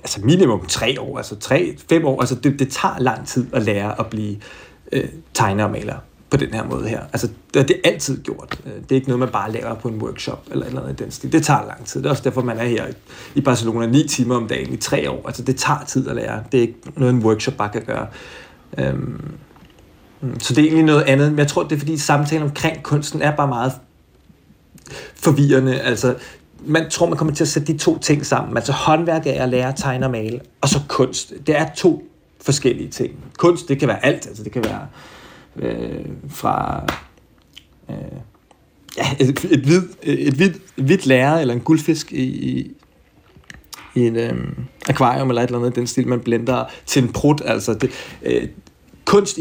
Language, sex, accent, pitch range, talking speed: Danish, male, native, 125-150 Hz, 205 wpm